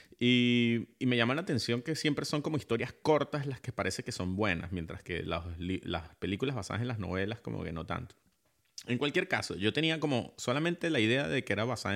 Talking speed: 225 wpm